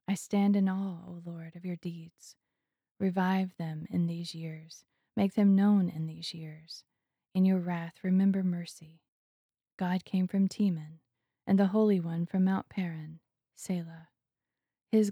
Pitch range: 165-195 Hz